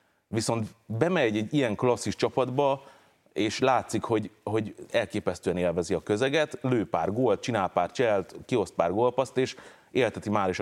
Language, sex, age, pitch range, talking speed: Hungarian, male, 30-49, 95-120 Hz, 155 wpm